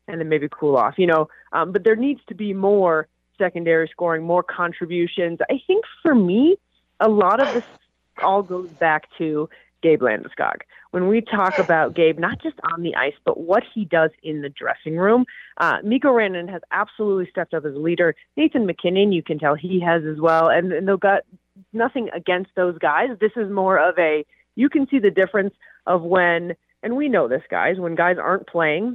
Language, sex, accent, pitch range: English, female, American, 160-200 Hz